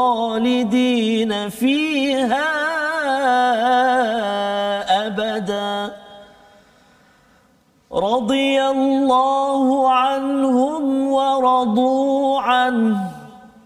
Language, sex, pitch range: Malayalam, male, 210-270 Hz